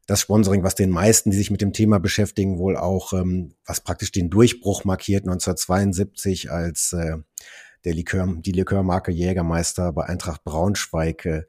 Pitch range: 90-110 Hz